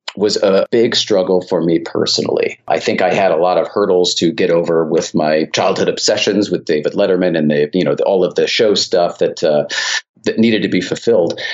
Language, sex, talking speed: English, male, 220 wpm